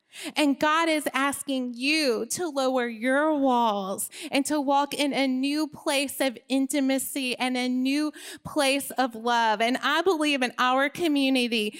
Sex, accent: female, American